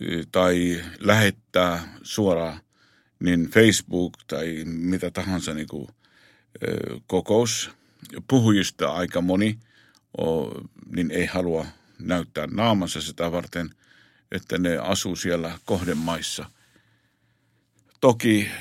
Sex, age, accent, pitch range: male, 50-69, native, 85-105 Hz